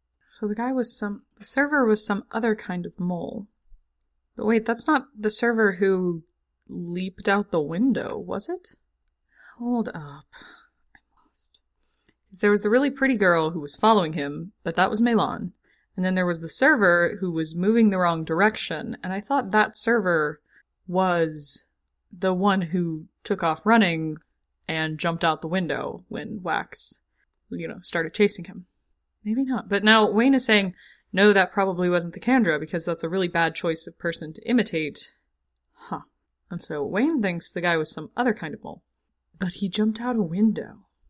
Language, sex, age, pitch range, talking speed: English, female, 20-39, 170-230 Hz, 180 wpm